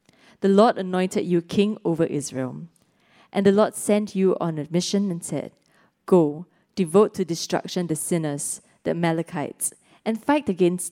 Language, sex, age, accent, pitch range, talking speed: English, female, 20-39, Malaysian, 165-200 Hz, 155 wpm